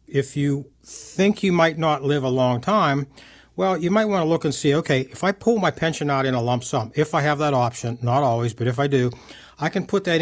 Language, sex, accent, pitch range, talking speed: English, male, American, 125-155 Hz, 260 wpm